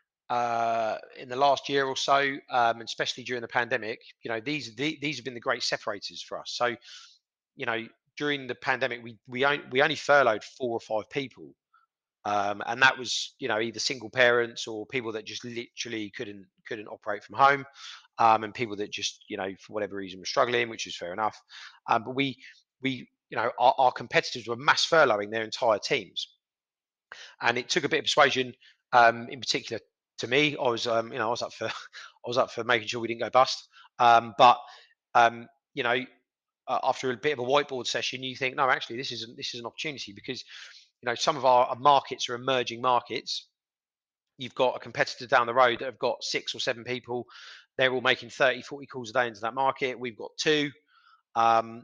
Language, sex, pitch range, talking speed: English, male, 115-135 Hz, 215 wpm